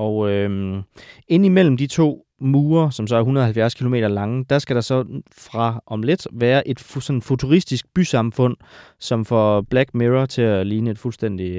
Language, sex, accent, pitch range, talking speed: Danish, male, native, 105-135 Hz, 180 wpm